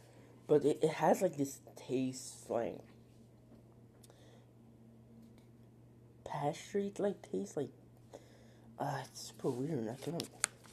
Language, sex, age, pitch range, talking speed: English, male, 20-39, 115-140 Hz, 105 wpm